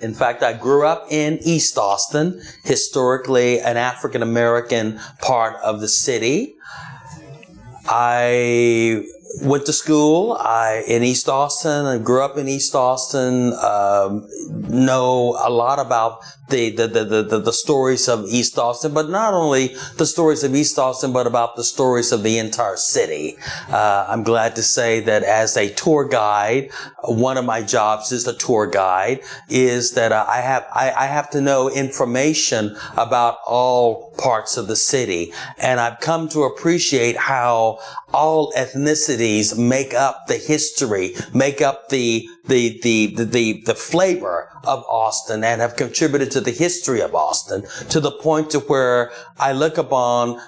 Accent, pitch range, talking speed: American, 115-145 Hz, 160 wpm